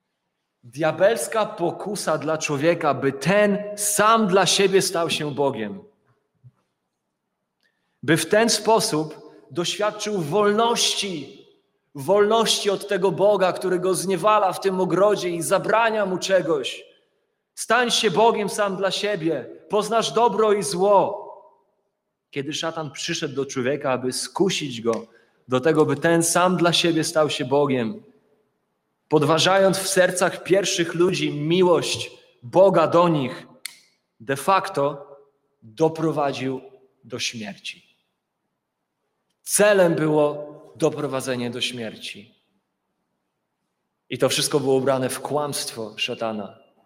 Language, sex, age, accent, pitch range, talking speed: Polish, male, 30-49, native, 130-195 Hz, 110 wpm